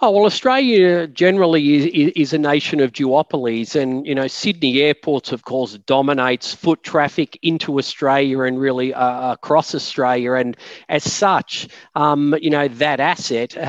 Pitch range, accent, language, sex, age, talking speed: 130-155 Hz, Australian, English, male, 40-59, 155 wpm